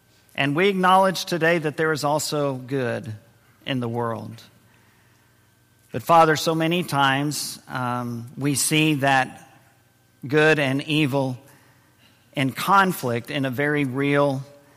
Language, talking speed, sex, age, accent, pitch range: English, 120 wpm, male, 50-69, American, 120-145 Hz